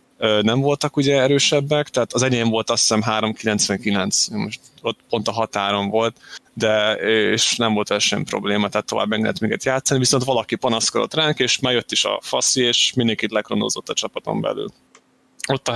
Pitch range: 110-130 Hz